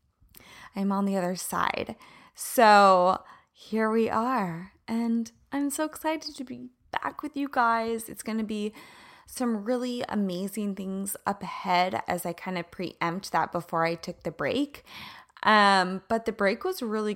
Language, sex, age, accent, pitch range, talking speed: English, female, 20-39, American, 170-230 Hz, 160 wpm